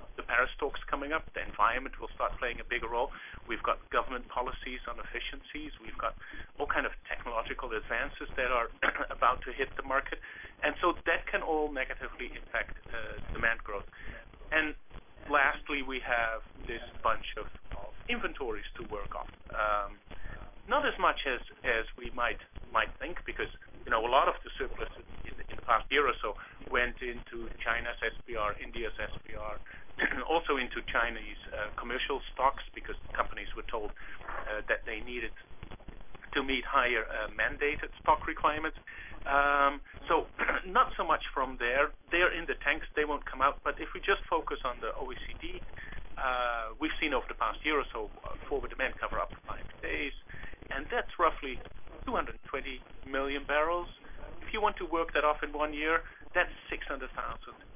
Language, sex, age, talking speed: English, male, 40-59, 165 wpm